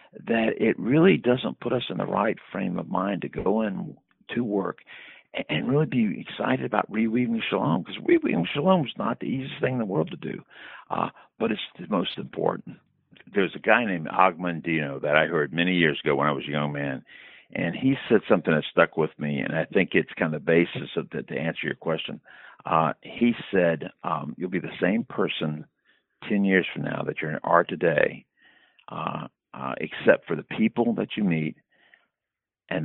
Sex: male